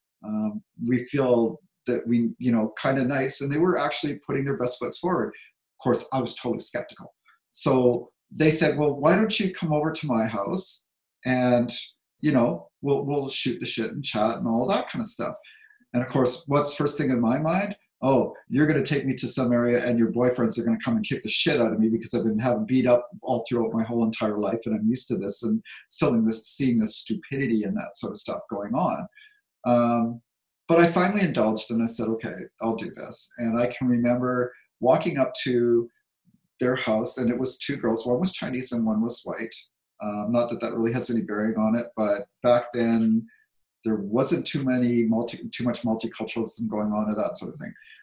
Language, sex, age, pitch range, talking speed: English, male, 50-69, 115-150 Hz, 220 wpm